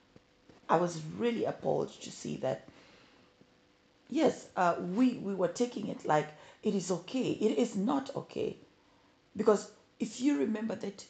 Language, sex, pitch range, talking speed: English, female, 175-230 Hz, 145 wpm